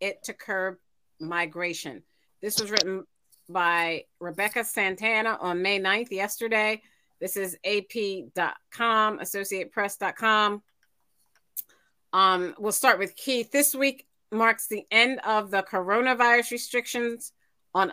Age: 40-59